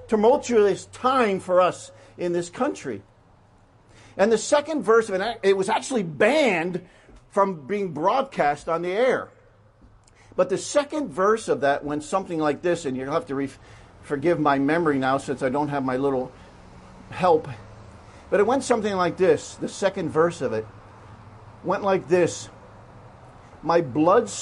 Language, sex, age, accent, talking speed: English, male, 50-69, American, 155 wpm